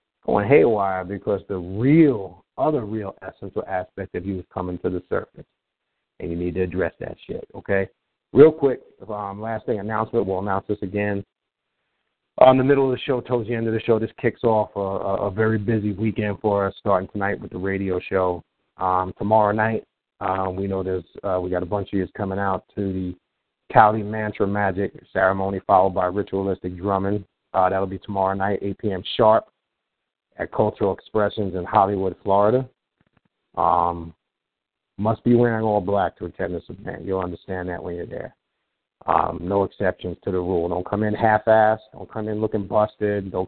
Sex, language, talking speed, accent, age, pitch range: male, English, 190 wpm, American, 40-59, 95-110 Hz